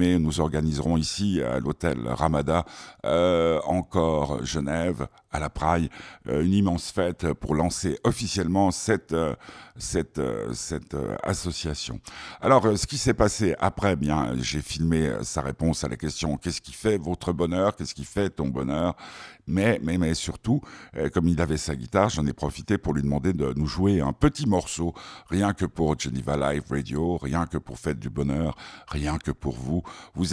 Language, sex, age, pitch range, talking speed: French, male, 60-79, 75-100 Hz, 170 wpm